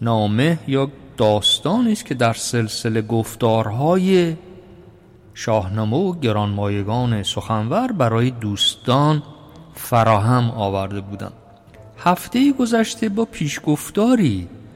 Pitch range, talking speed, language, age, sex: 115-165 Hz, 80 wpm, Persian, 50-69, male